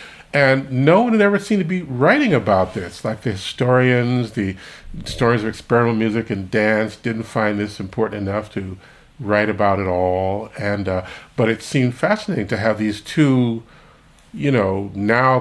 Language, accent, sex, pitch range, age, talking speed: English, American, male, 105-125 Hz, 50-69, 170 wpm